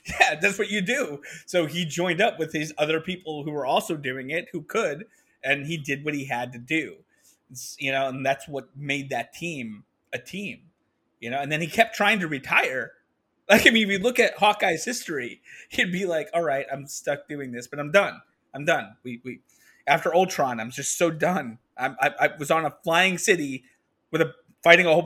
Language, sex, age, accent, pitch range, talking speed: English, male, 30-49, American, 130-170 Hz, 220 wpm